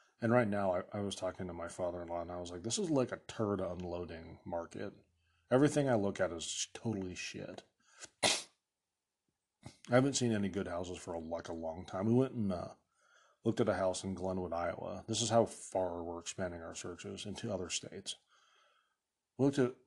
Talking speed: 200 wpm